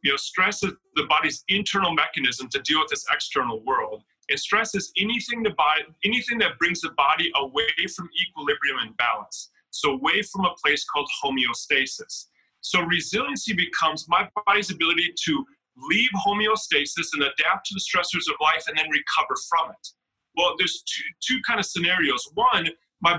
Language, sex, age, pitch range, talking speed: English, male, 30-49, 165-210 Hz, 165 wpm